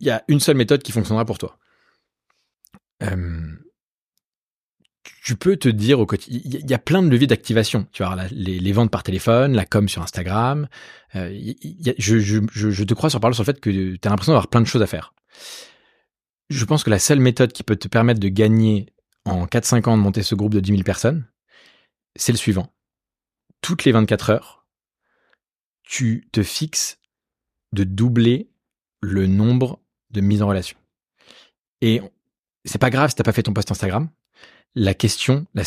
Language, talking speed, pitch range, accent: French, 195 wpm, 100-125 Hz, French